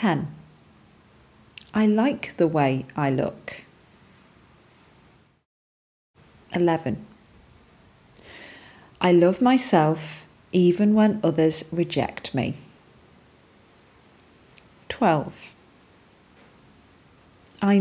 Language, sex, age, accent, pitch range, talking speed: English, female, 40-59, British, 155-210 Hz, 60 wpm